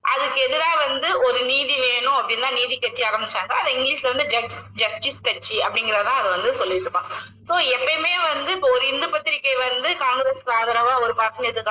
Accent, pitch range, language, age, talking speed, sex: native, 230-310 Hz, Tamil, 20-39, 175 wpm, female